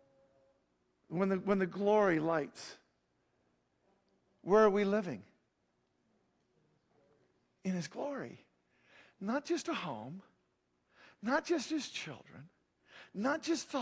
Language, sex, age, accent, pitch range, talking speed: English, male, 50-69, American, 185-245 Hz, 100 wpm